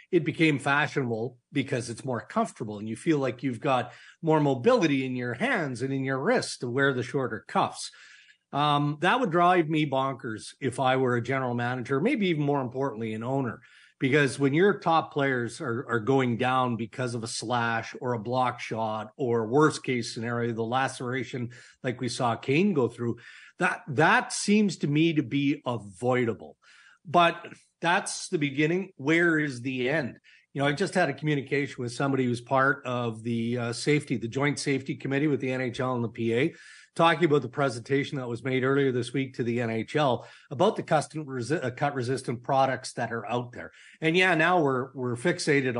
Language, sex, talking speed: English, male, 190 wpm